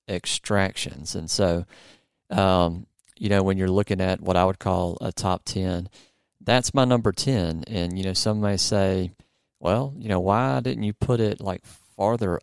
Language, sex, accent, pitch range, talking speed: English, male, American, 90-105 Hz, 180 wpm